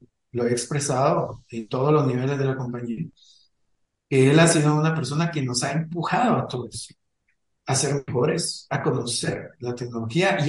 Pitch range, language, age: 125-155 Hz, English, 50-69